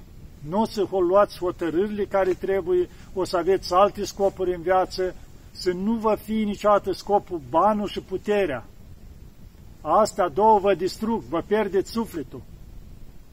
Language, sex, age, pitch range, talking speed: Romanian, male, 50-69, 155-205 Hz, 135 wpm